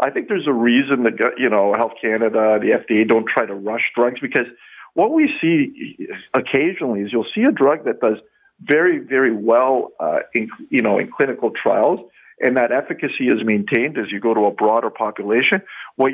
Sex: male